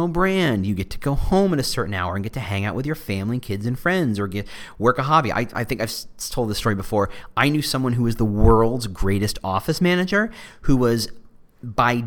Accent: American